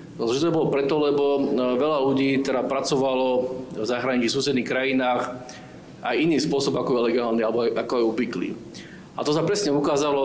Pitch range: 130-145 Hz